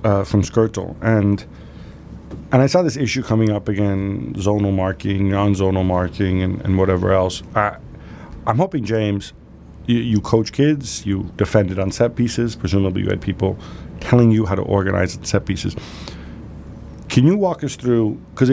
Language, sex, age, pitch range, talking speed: English, male, 40-59, 95-110 Hz, 160 wpm